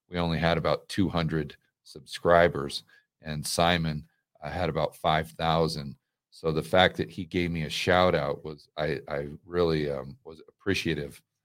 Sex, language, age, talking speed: male, English, 40-59, 150 wpm